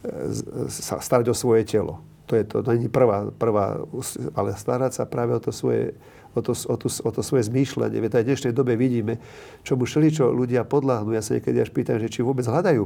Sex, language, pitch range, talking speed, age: male, Slovak, 115-140 Hz, 185 wpm, 50-69